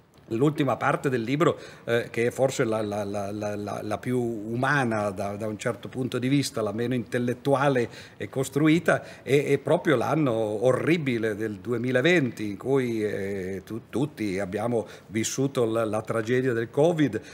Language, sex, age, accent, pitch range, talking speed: Italian, male, 50-69, native, 115-140 Hz, 145 wpm